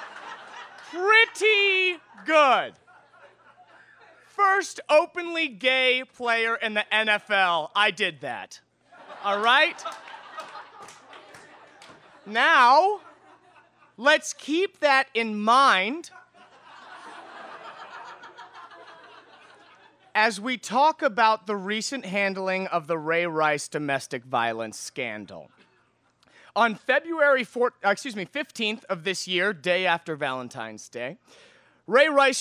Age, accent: 30-49, American